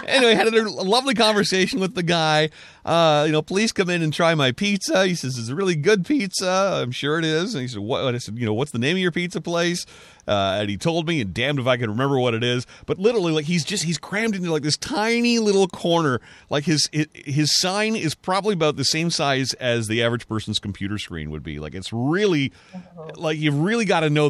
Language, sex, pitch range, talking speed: English, male, 115-180 Hz, 240 wpm